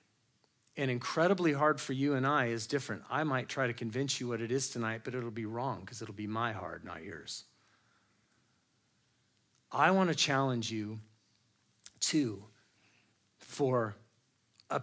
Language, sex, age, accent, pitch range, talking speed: English, male, 40-59, American, 120-160 Hz, 155 wpm